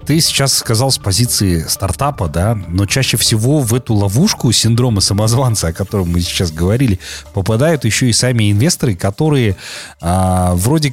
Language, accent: Russian, native